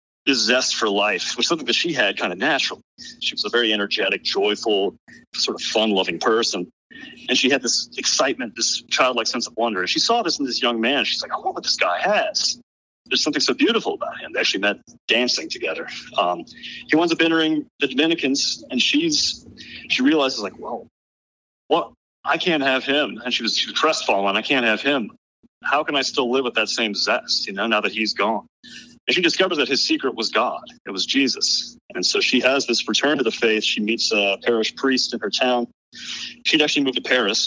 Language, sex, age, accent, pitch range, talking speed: English, male, 30-49, American, 115-160 Hz, 215 wpm